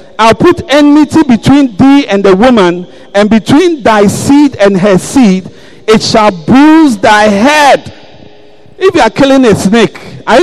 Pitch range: 160-255 Hz